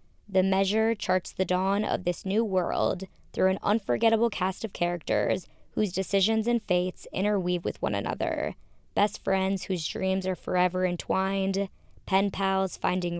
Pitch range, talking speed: 175-205 Hz, 150 wpm